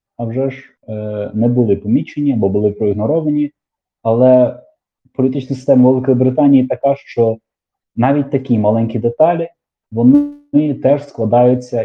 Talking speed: 125 wpm